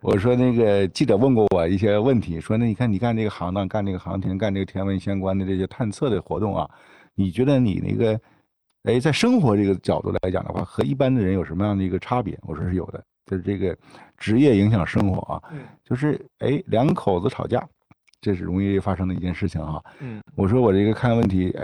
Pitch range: 95-125 Hz